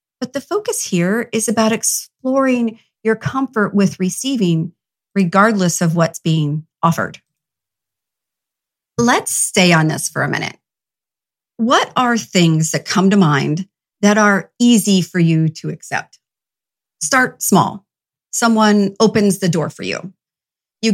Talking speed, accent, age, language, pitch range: 130 wpm, American, 40-59, English, 170-230 Hz